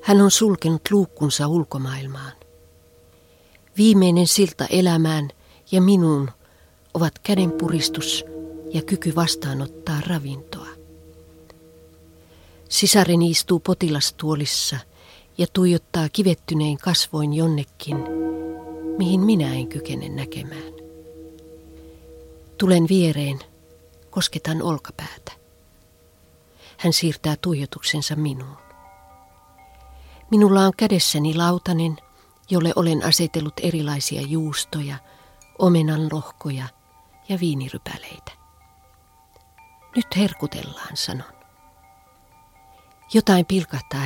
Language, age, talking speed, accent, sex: Finnish, 40-59, 75 wpm, native, female